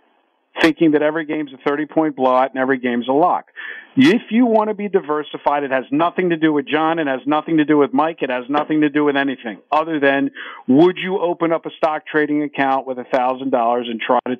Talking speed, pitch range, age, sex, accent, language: 225 wpm, 125-165 Hz, 50-69, male, American, English